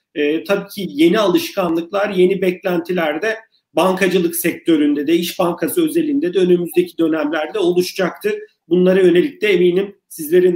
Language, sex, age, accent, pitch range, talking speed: Turkish, male, 50-69, native, 180-250 Hz, 130 wpm